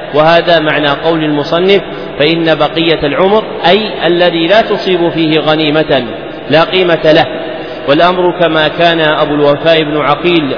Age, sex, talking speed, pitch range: 40-59, male, 130 wpm, 160-185 Hz